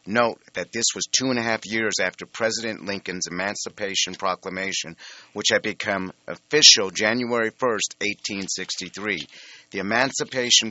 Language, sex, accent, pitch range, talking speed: English, male, American, 95-115 Hz, 130 wpm